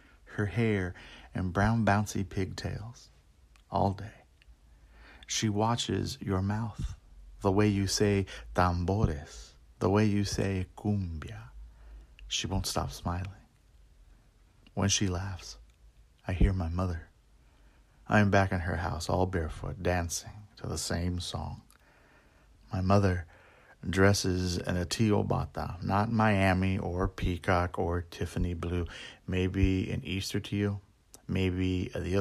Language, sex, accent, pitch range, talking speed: English, male, American, 85-105 Hz, 125 wpm